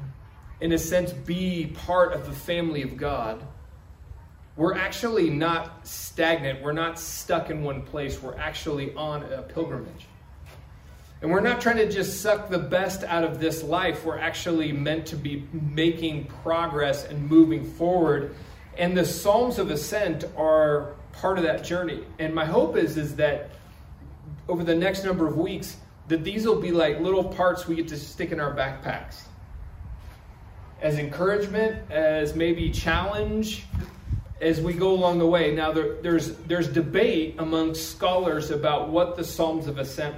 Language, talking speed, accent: English, 160 wpm, American